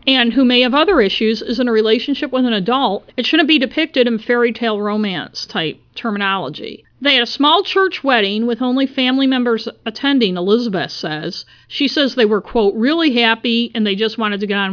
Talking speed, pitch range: 205 wpm, 205-245 Hz